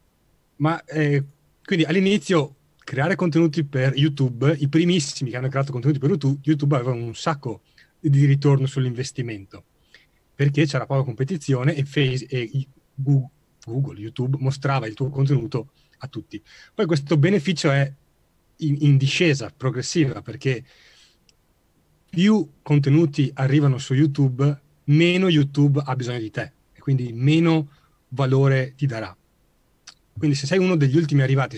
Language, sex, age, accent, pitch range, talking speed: Italian, male, 30-49, native, 125-150 Hz, 135 wpm